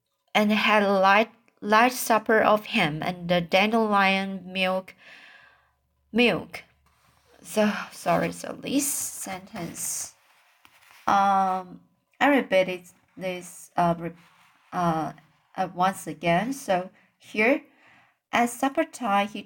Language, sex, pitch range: Chinese, female, 185-235 Hz